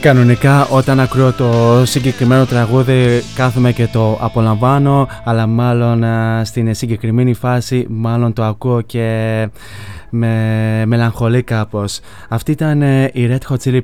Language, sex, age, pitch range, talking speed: Greek, male, 20-39, 110-125 Hz, 120 wpm